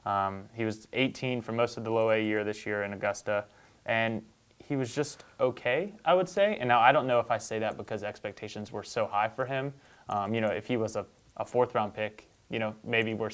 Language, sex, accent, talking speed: English, male, American, 235 wpm